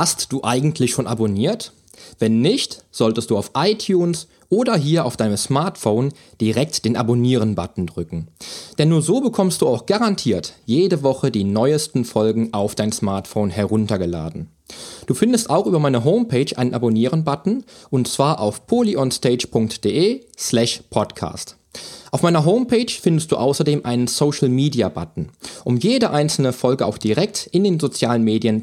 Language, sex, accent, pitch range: German, male, German, 110-165 Hz